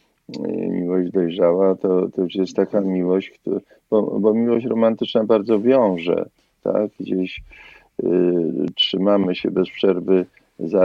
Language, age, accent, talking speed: Polish, 50-69, native, 125 wpm